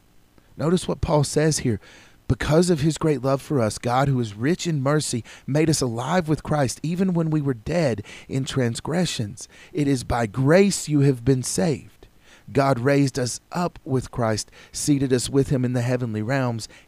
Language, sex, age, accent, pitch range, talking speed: English, male, 40-59, American, 100-140 Hz, 185 wpm